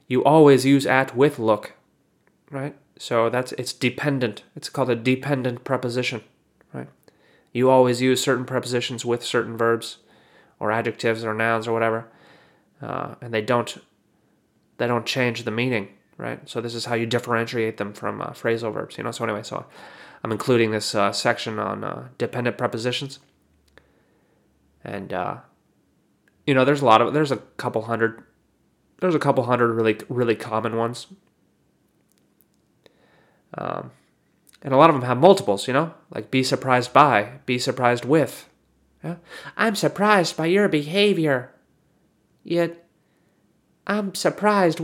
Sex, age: male, 30-49